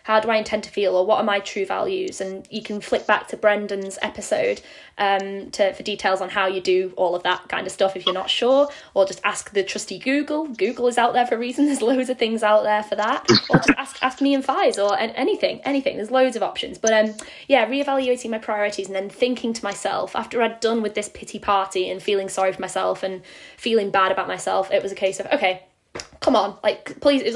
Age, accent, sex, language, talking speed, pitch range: 10-29, British, female, English, 250 wpm, 190-235 Hz